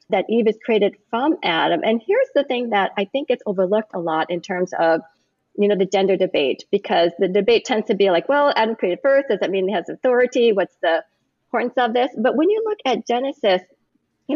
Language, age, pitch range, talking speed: English, 40-59, 195-255 Hz, 225 wpm